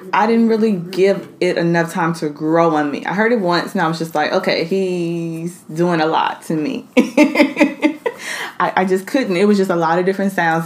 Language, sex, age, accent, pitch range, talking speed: English, female, 20-39, American, 155-185 Hz, 220 wpm